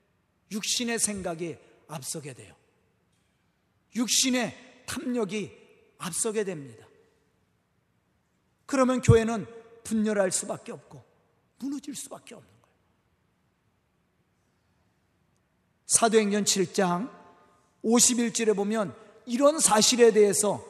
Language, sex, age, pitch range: Korean, male, 40-59, 195-310 Hz